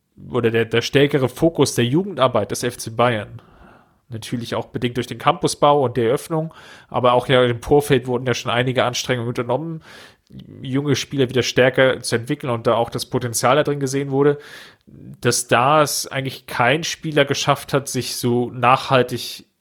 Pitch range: 120-135 Hz